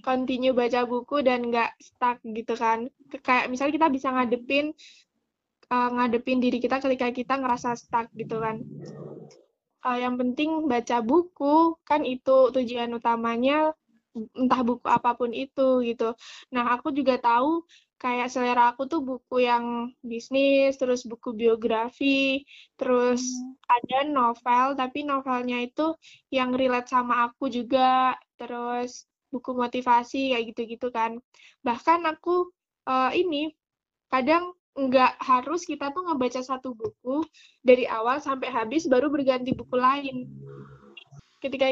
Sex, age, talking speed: female, 10-29, 130 wpm